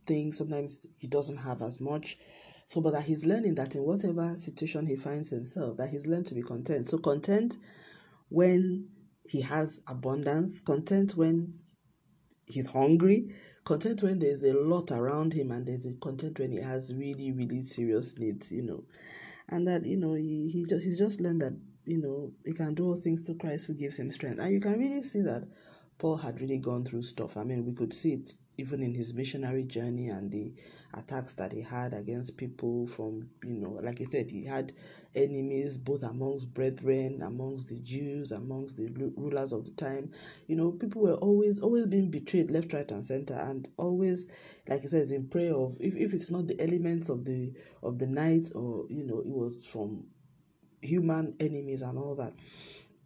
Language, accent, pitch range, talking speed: English, Nigerian, 130-165 Hz, 195 wpm